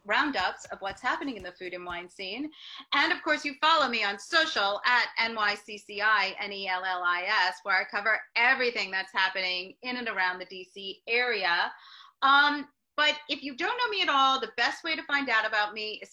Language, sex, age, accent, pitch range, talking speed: English, female, 30-49, American, 200-265 Hz, 190 wpm